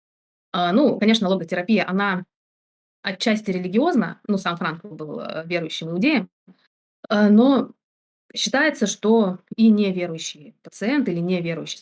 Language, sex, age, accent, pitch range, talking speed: Russian, female, 20-39, native, 180-225 Hz, 100 wpm